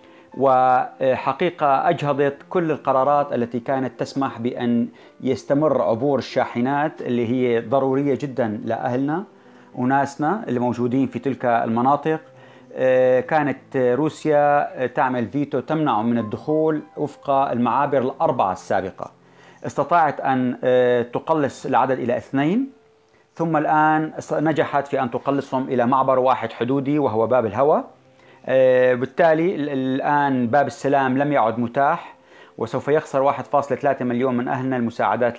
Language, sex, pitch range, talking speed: Arabic, male, 120-145 Hz, 110 wpm